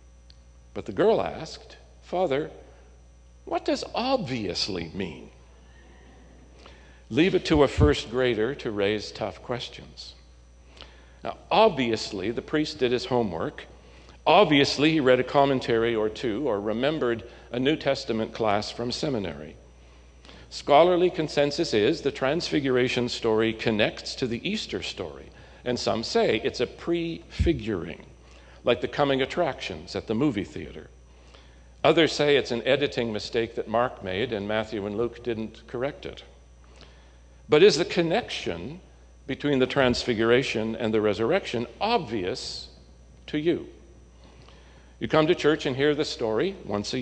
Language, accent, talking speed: English, American, 135 wpm